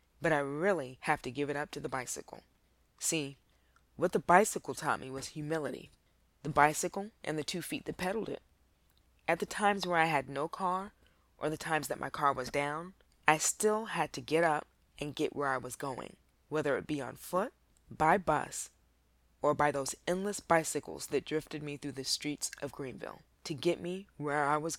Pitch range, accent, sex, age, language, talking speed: 135-165 Hz, American, female, 20-39, English, 200 wpm